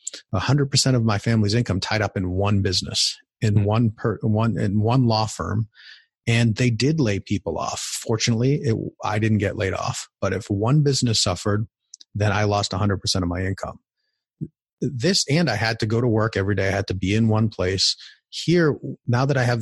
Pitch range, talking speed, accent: 105-130 Hz, 200 wpm, American